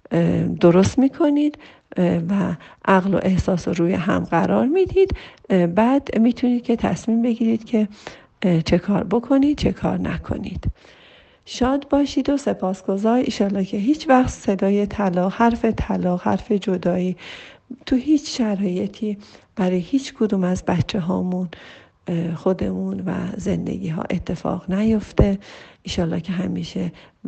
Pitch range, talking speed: 175-210 Hz, 120 wpm